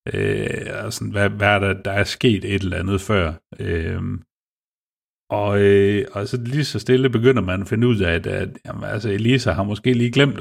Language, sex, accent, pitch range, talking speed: Danish, male, native, 95-115 Hz, 210 wpm